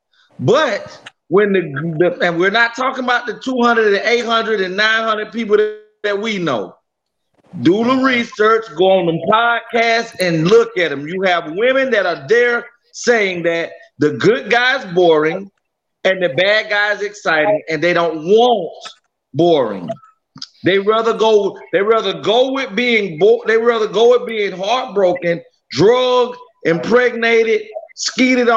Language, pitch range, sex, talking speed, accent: English, 185-235 Hz, male, 150 wpm, American